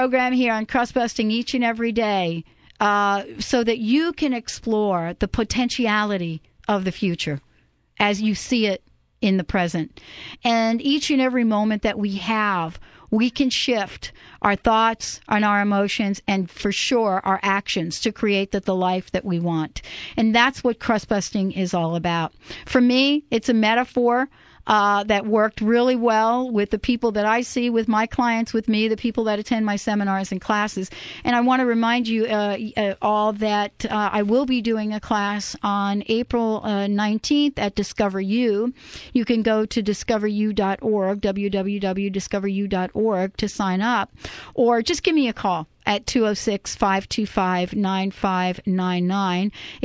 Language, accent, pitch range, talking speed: English, American, 200-245 Hz, 160 wpm